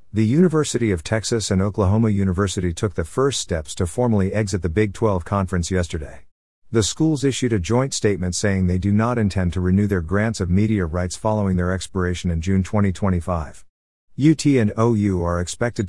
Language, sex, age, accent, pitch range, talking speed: English, male, 50-69, American, 90-110 Hz, 180 wpm